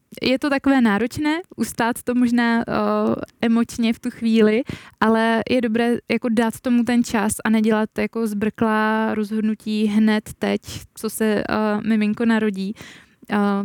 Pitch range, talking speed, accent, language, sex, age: 210-230 Hz, 150 wpm, native, Czech, female, 20-39